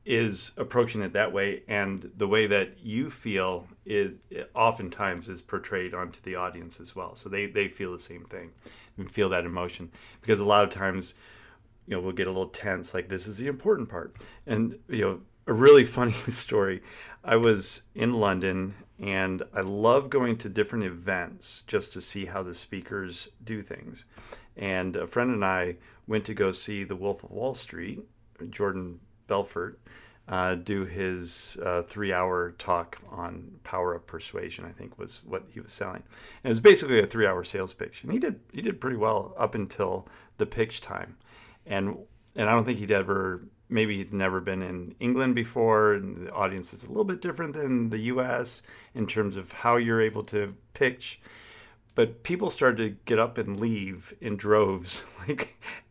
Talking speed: 190 wpm